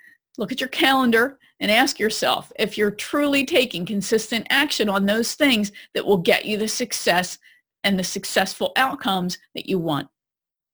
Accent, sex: American, female